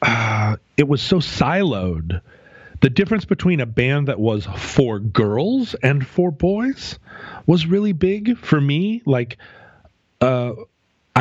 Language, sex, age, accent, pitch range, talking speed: English, male, 40-59, American, 105-140 Hz, 130 wpm